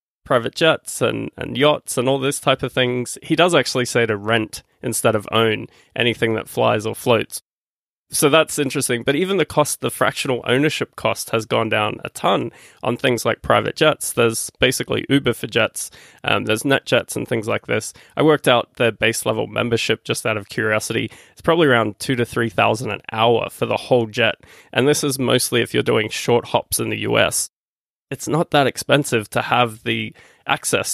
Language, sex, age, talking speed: English, male, 20-39, 195 wpm